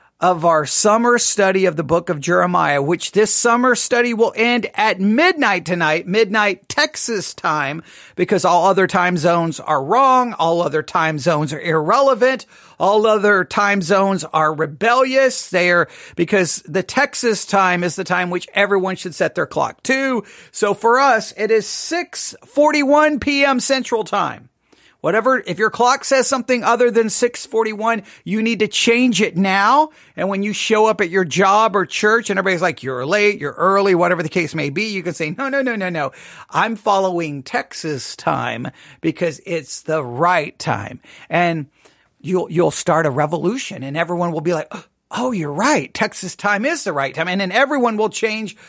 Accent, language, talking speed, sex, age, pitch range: American, English, 180 wpm, male, 40-59, 175-240 Hz